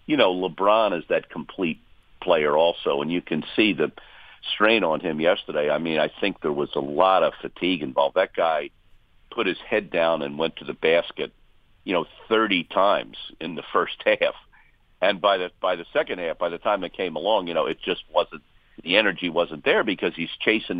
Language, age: English, 50-69